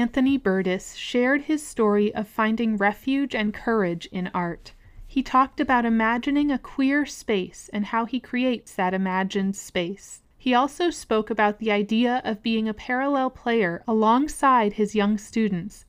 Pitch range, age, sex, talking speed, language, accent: 200-255 Hz, 30-49, female, 155 wpm, English, American